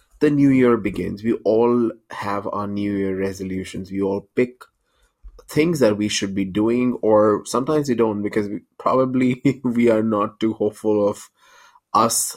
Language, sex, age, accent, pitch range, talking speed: English, male, 20-39, Indian, 100-120 Hz, 160 wpm